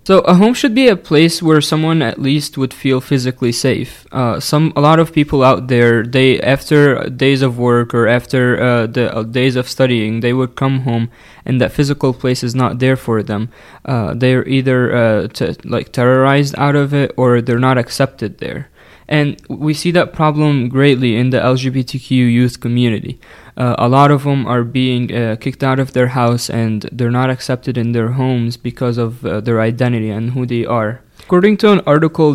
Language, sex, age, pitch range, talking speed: English, male, 20-39, 120-145 Hz, 200 wpm